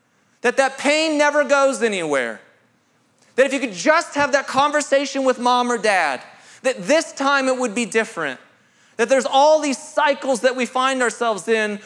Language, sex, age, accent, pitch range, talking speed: English, male, 30-49, American, 220-275 Hz, 175 wpm